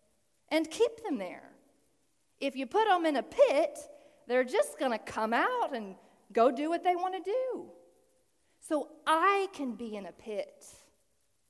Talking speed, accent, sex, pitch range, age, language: 160 wpm, American, female, 220-295 Hz, 40-59, English